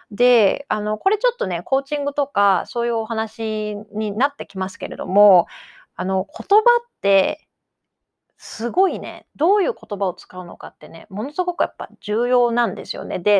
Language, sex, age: Japanese, female, 30-49